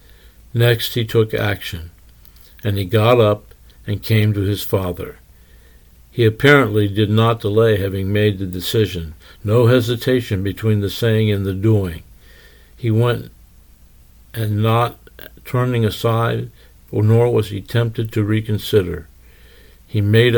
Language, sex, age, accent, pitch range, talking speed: English, male, 60-79, American, 95-115 Hz, 130 wpm